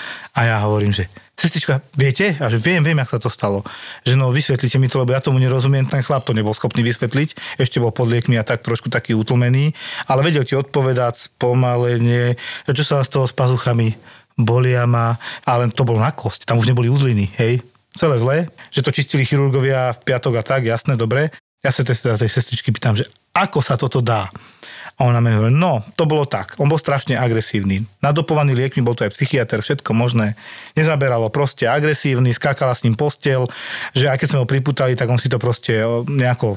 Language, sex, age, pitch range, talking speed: Slovak, male, 40-59, 120-145 Hz, 205 wpm